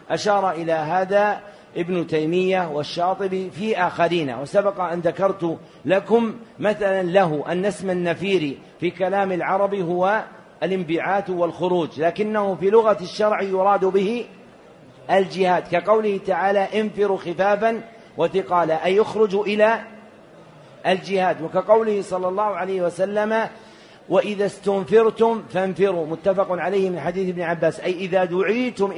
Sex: male